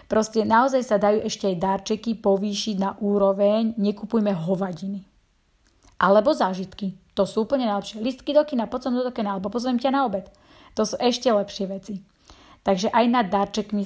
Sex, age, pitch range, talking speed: female, 30-49, 195-220 Hz, 170 wpm